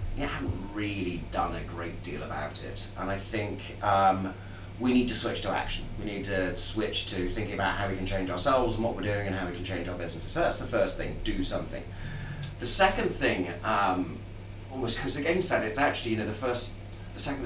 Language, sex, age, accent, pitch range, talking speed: English, male, 30-49, British, 95-110 Hz, 225 wpm